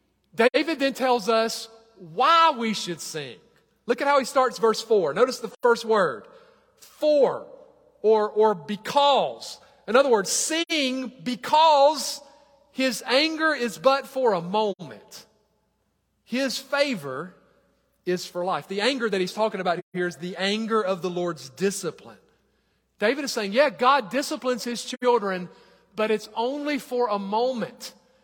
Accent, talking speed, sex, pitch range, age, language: American, 145 wpm, male, 205-270 Hz, 40-59, English